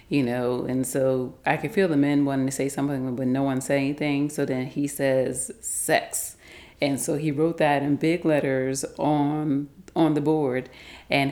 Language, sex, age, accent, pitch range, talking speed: English, female, 40-59, American, 130-155 Hz, 190 wpm